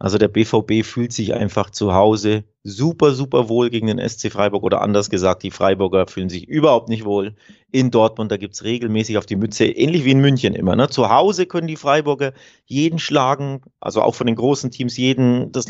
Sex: male